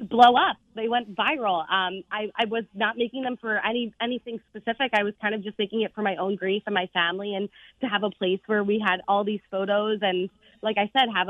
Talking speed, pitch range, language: 245 wpm, 195-230 Hz, English